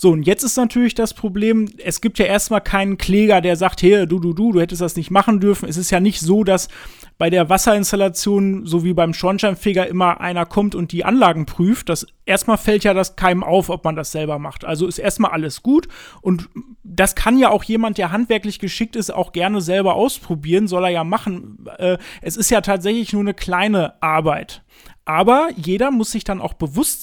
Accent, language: German, German